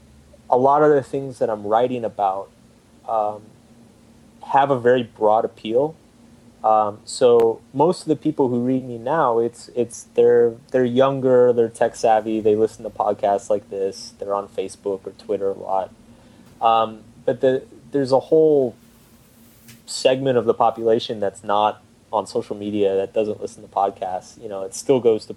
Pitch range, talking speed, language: 110-130 Hz, 170 wpm, English